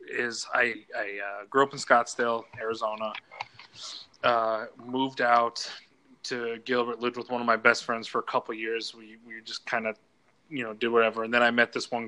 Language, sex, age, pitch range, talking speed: English, male, 20-39, 115-125 Hz, 205 wpm